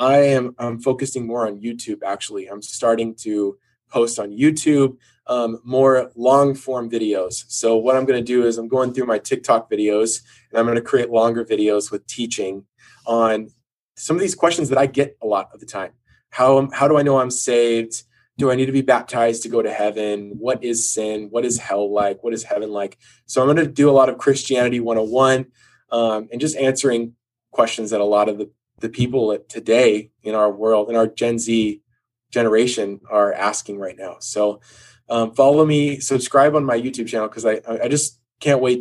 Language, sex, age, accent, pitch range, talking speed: English, male, 20-39, American, 110-130 Hz, 205 wpm